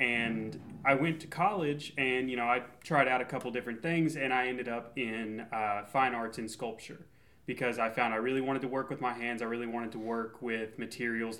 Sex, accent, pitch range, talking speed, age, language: male, American, 115-140 Hz, 225 wpm, 30-49, English